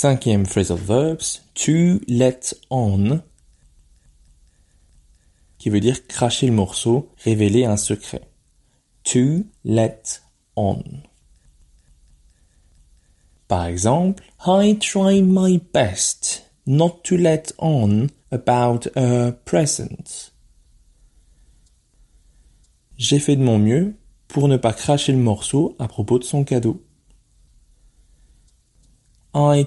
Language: French